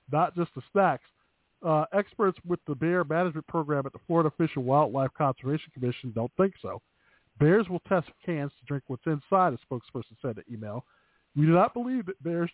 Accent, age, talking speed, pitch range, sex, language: American, 50-69, 195 wpm, 125-170 Hz, male, English